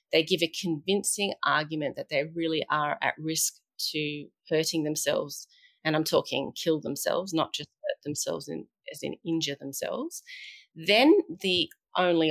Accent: Australian